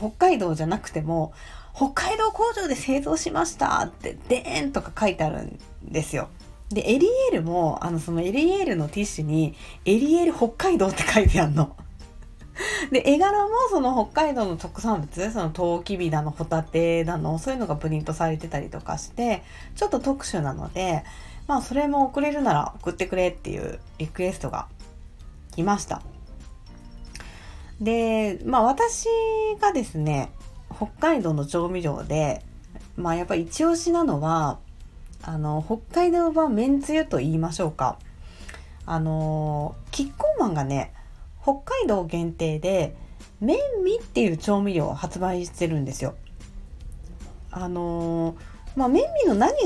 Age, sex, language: 40-59, female, Japanese